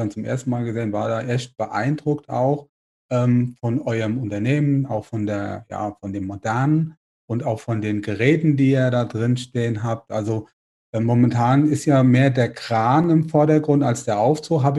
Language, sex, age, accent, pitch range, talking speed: German, male, 30-49, German, 115-140 Hz, 185 wpm